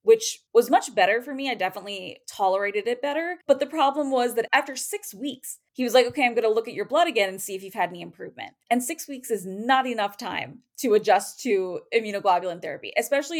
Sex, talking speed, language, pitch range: female, 230 wpm, English, 190-255 Hz